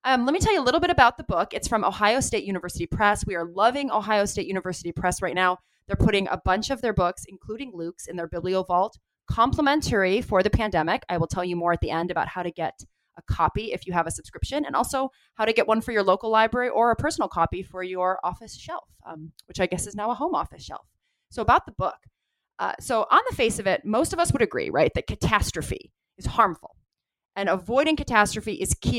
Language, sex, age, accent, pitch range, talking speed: English, female, 20-39, American, 180-240 Hz, 240 wpm